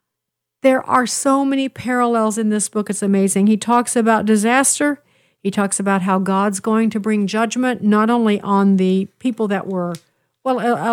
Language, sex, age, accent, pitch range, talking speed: English, female, 50-69, American, 195-240 Hz, 175 wpm